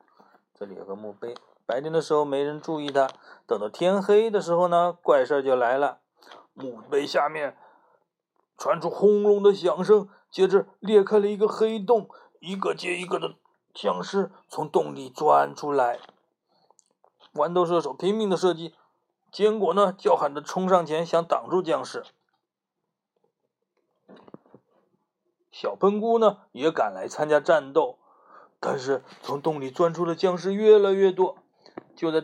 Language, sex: Chinese, male